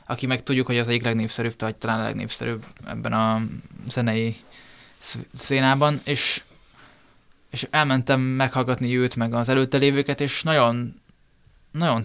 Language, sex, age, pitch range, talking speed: Hungarian, male, 20-39, 115-135 Hz, 135 wpm